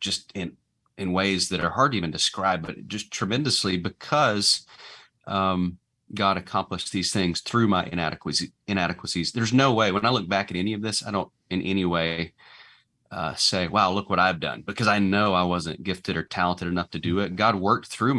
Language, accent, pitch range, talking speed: English, American, 90-105 Hz, 200 wpm